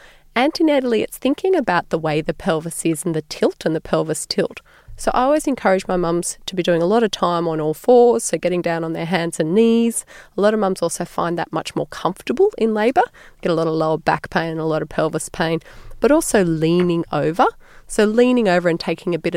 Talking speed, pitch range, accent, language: 235 wpm, 165-210 Hz, Australian, English